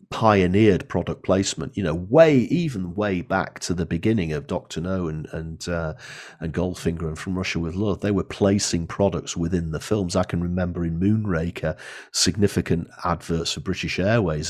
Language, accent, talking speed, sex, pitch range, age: English, British, 175 wpm, male, 85-105 Hz, 40-59